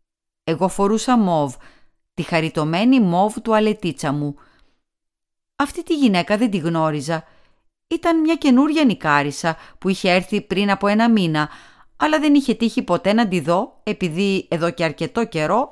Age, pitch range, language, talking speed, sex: 40-59, 165-255 Hz, Greek, 150 wpm, female